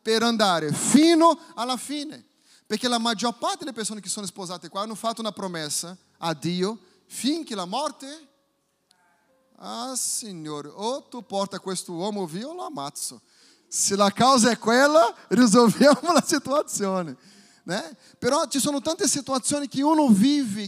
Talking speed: 155 wpm